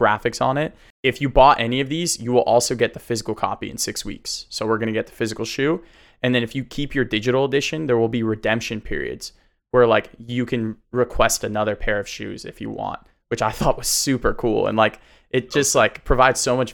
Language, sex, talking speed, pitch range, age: English, male, 235 wpm, 110-130 Hz, 20-39